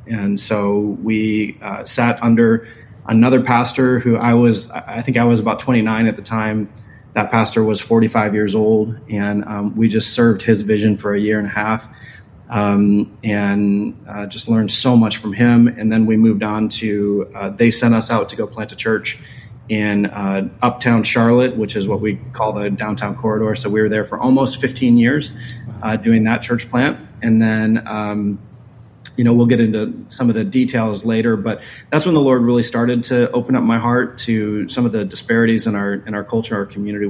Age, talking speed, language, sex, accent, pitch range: 30-49, 200 wpm, English, male, American, 105-120 Hz